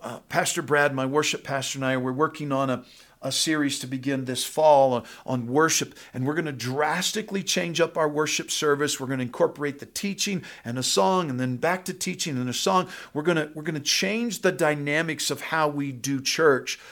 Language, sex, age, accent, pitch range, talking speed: English, male, 50-69, American, 135-160 Hz, 220 wpm